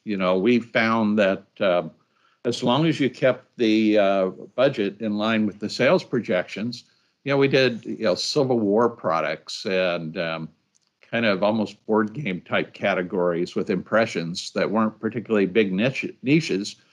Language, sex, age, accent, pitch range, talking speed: English, male, 60-79, American, 100-120 Hz, 160 wpm